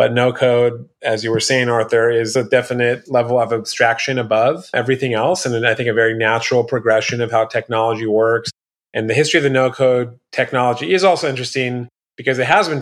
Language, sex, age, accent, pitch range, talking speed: English, male, 30-49, American, 115-135 Hz, 200 wpm